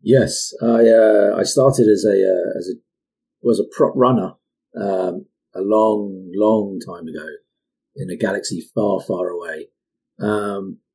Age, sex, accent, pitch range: 40-59, male, British, 105-125 Hz